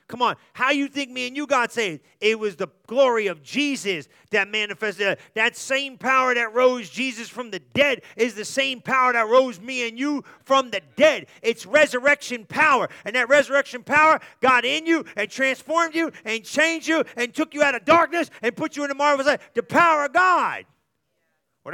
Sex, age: male, 40-59